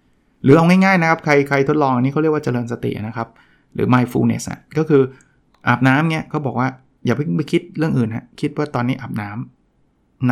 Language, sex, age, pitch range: Thai, male, 20-39, 120-150 Hz